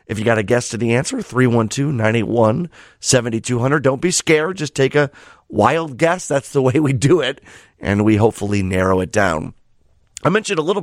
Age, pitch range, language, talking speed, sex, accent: 30-49, 100-130 Hz, English, 195 wpm, male, American